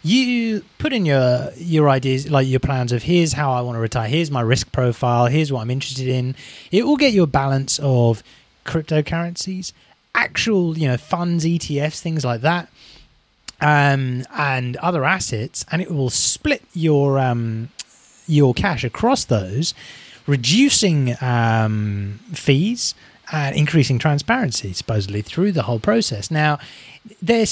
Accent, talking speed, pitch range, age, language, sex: British, 145 wpm, 125-170 Hz, 30-49, English, male